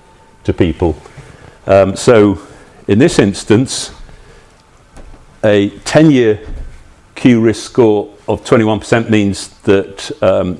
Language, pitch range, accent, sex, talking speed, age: English, 90-110 Hz, British, male, 100 wpm, 50-69